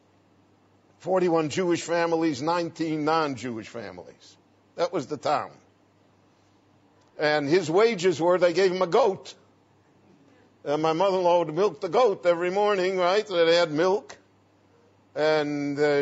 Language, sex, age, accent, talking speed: English, male, 60-79, American, 125 wpm